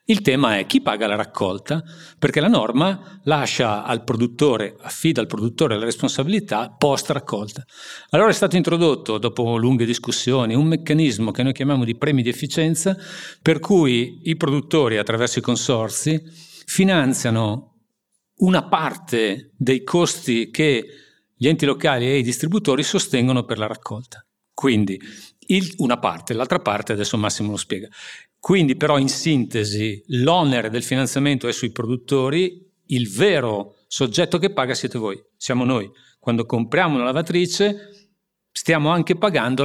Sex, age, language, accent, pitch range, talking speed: male, 50-69, Italian, native, 120-165 Hz, 140 wpm